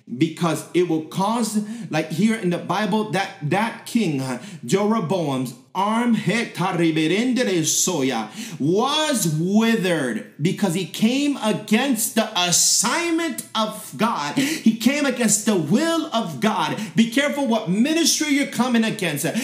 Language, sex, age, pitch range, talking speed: English, male, 30-49, 175-240 Hz, 115 wpm